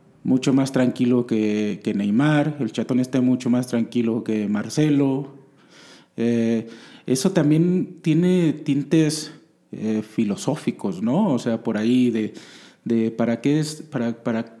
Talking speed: 120 wpm